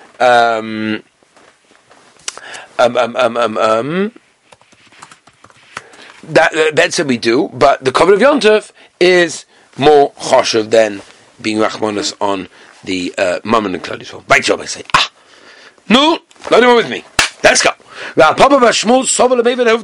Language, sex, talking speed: English, male, 125 wpm